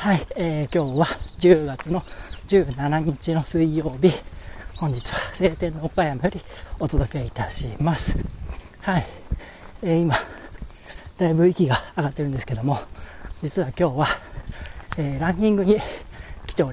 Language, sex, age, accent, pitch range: Japanese, male, 40-59, native, 105-170 Hz